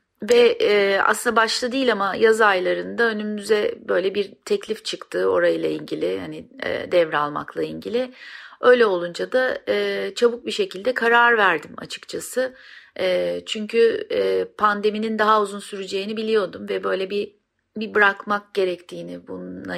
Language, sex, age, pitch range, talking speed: Turkish, female, 40-59, 170-230 Hz, 135 wpm